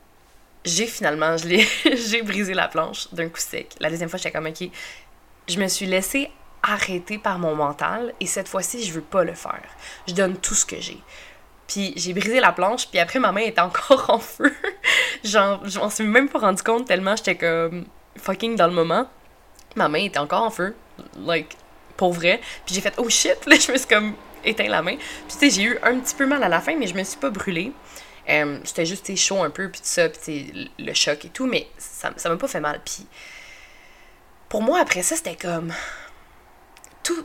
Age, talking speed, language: 20-39, 230 wpm, French